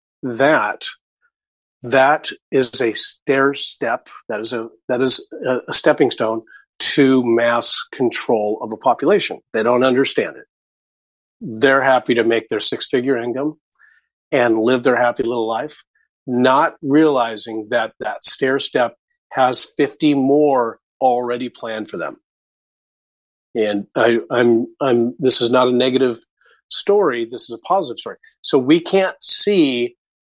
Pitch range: 115-150 Hz